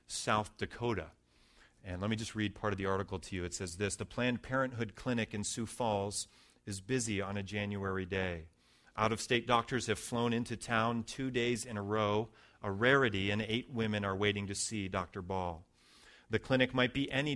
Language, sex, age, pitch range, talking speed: English, male, 40-59, 95-115 Hz, 200 wpm